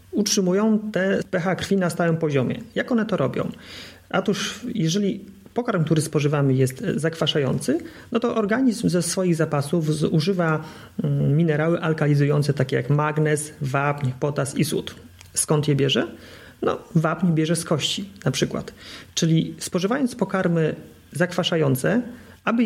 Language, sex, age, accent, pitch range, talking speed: Polish, male, 30-49, native, 145-185 Hz, 130 wpm